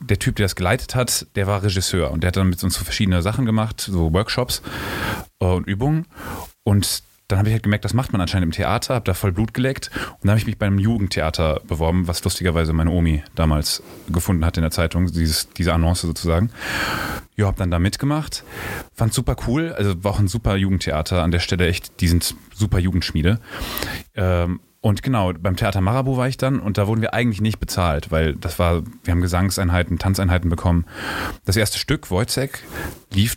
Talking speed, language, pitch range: 205 wpm, German, 90-110 Hz